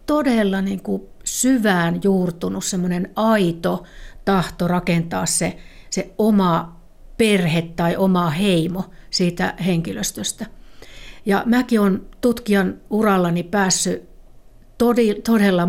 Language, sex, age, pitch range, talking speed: Finnish, female, 60-79, 180-215 Hz, 90 wpm